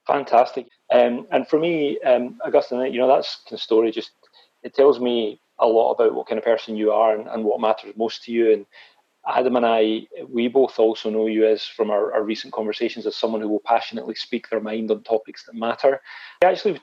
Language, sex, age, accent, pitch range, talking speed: English, male, 30-49, British, 110-125 Hz, 215 wpm